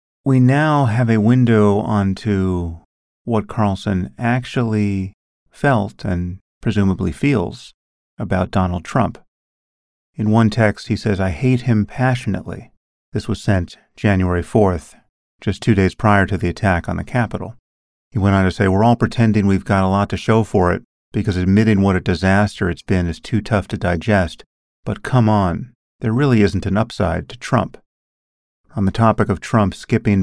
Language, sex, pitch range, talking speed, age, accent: English, male, 95-110 Hz, 165 wpm, 40-59, American